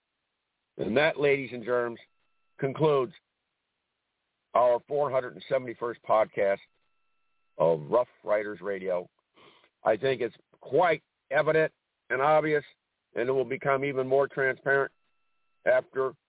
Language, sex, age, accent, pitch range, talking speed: English, male, 60-79, American, 125-165 Hz, 105 wpm